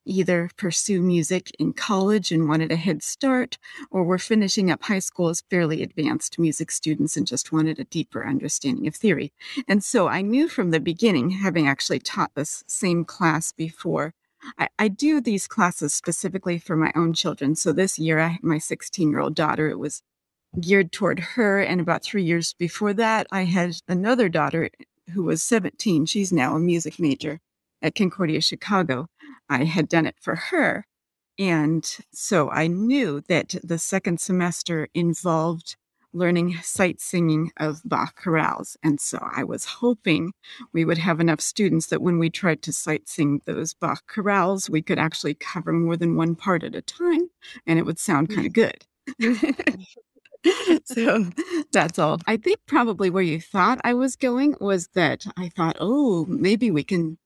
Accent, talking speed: American, 175 wpm